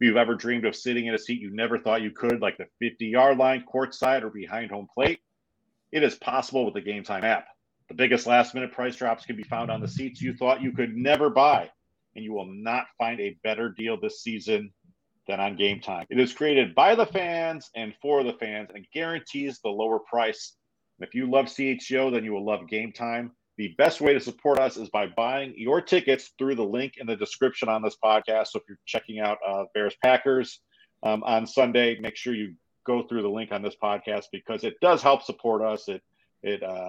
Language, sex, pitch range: English, male, 110-135 Hz